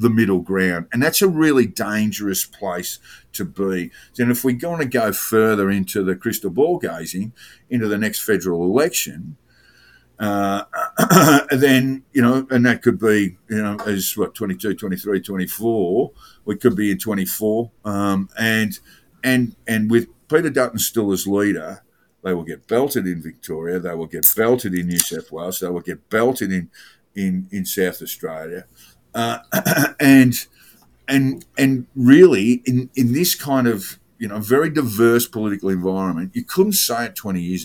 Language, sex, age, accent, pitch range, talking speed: English, male, 50-69, Australian, 95-125 Hz, 165 wpm